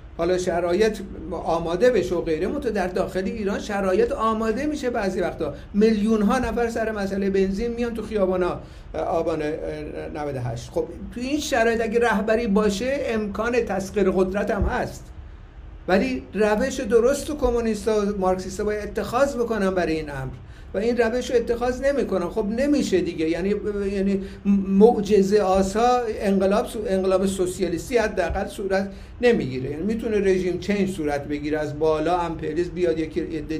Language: Persian